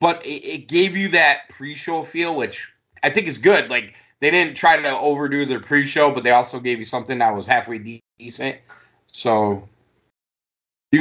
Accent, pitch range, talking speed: American, 110-145 Hz, 180 wpm